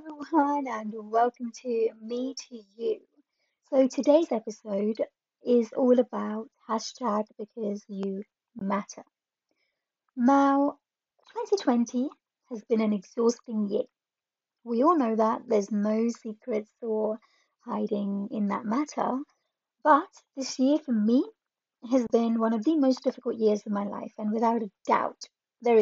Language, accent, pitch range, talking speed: English, British, 215-260 Hz, 130 wpm